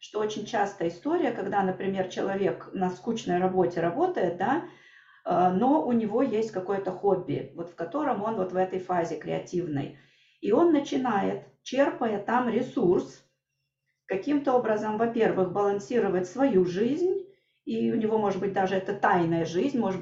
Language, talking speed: Russian, 145 wpm